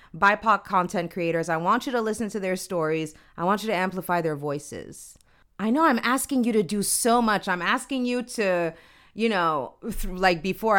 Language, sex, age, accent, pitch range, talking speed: English, female, 30-49, American, 165-225 Hz, 195 wpm